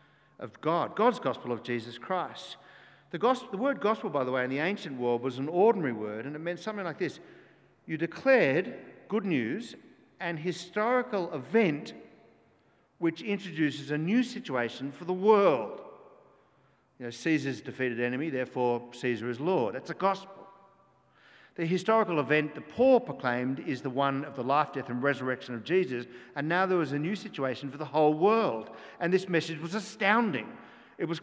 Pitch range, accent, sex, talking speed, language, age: 135-210 Hz, Australian, male, 175 wpm, English, 50-69